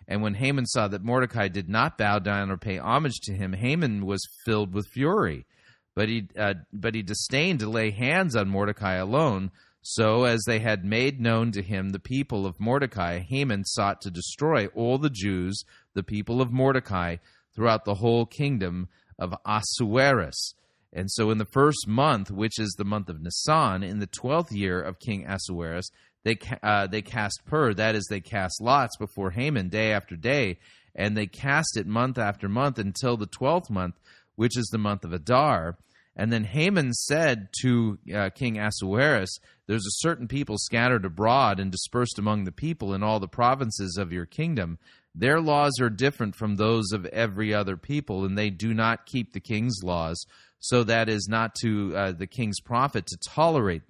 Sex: male